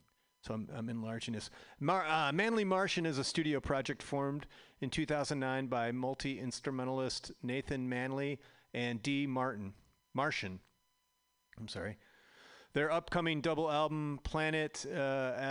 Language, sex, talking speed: English, male, 125 wpm